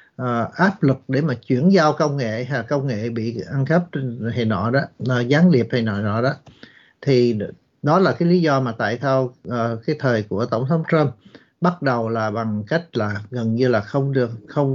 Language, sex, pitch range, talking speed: Vietnamese, male, 125-170 Hz, 215 wpm